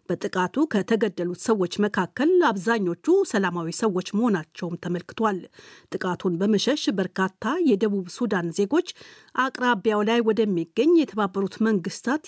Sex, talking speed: female, 100 wpm